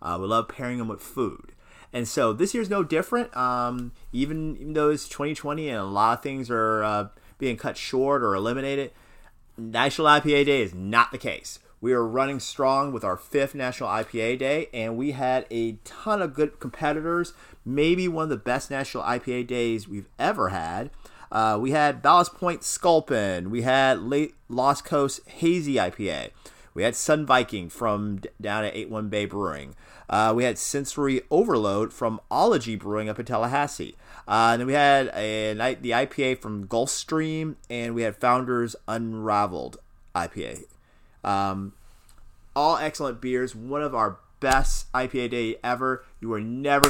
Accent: American